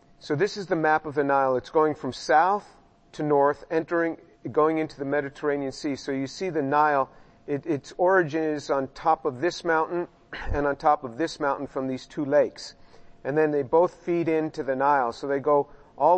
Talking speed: 205 wpm